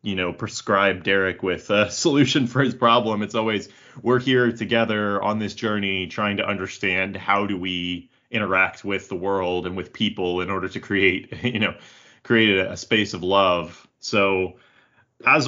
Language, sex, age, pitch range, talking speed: English, male, 30-49, 95-120 Hz, 175 wpm